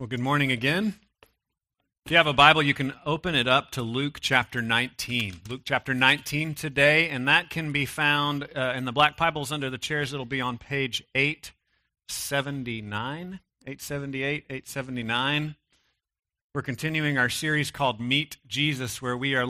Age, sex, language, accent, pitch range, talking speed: 40-59, male, English, American, 130-160 Hz, 160 wpm